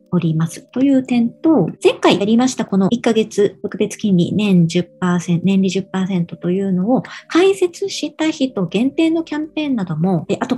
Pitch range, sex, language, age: 180-275 Hz, male, Japanese, 40-59